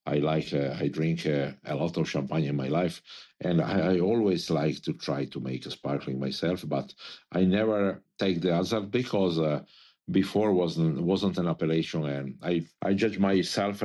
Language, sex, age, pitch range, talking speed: English, male, 50-69, 75-100 Hz, 180 wpm